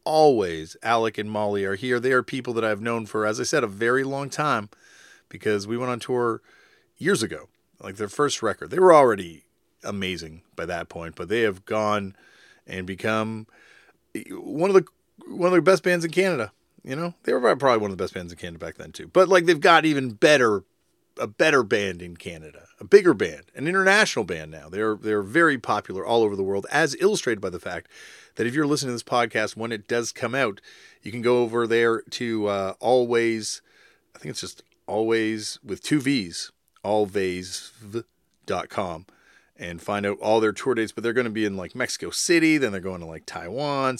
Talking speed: 205 wpm